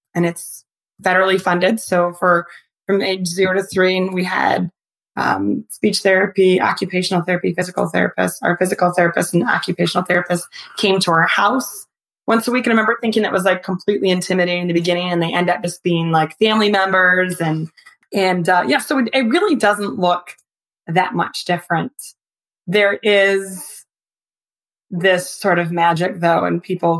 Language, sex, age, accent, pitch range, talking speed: English, female, 20-39, American, 170-195 Hz, 170 wpm